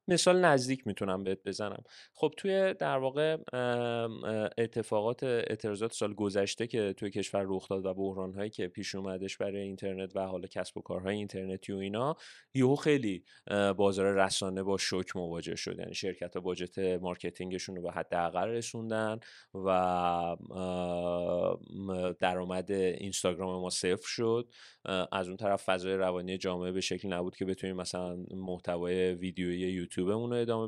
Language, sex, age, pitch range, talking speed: Persian, male, 20-39, 95-115 Hz, 140 wpm